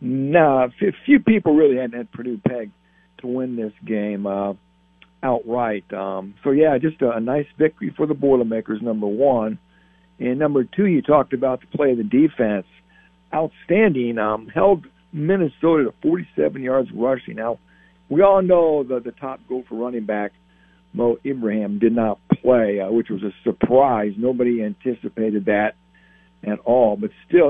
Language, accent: English, American